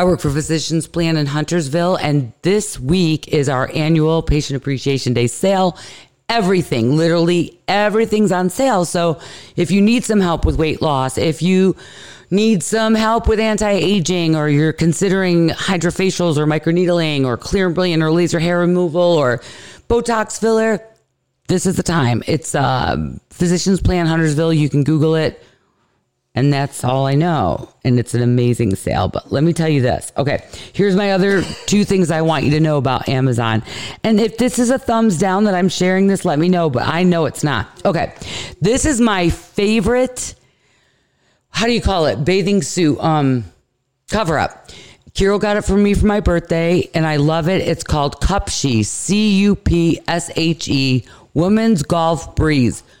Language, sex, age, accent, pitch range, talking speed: English, female, 40-59, American, 145-195 Hz, 170 wpm